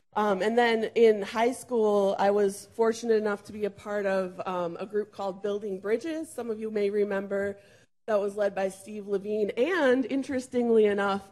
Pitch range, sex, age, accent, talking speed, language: 195-235 Hz, female, 20-39, American, 185 wpm, English